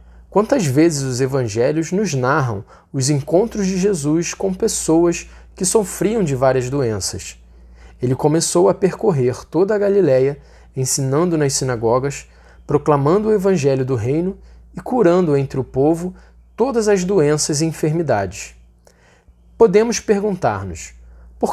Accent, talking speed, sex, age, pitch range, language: Brazilian, 125 wpm, male, 20-39, 115-180 Hz, Portuguese